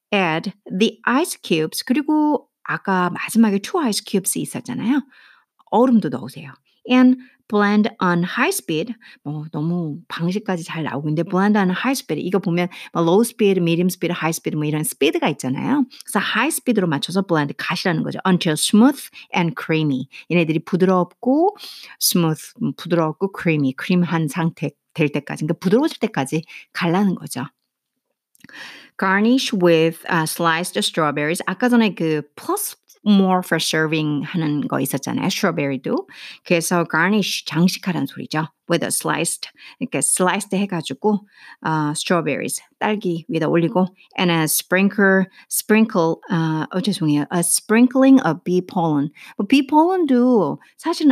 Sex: female